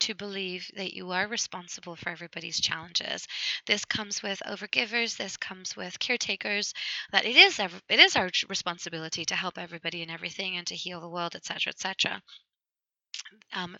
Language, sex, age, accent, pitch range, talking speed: English, female, 20-39, American, 180-235 Hz, 165 wpm